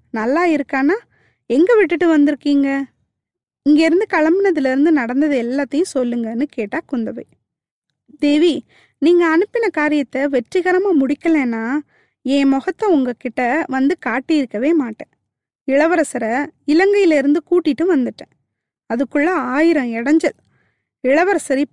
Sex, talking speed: female, 95 wpm